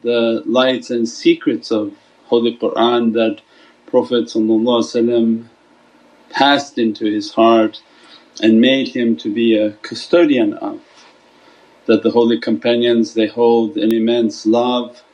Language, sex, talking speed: English, male, 120 wpm